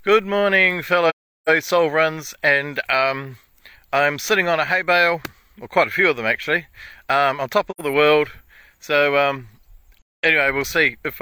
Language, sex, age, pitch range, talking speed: English, male, 40-59, 140-175 Hz, 170 wpm